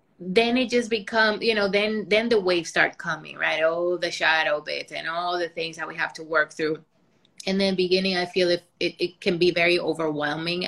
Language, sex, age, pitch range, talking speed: English, female, 20-39, 170-200 Hz, 220 wpm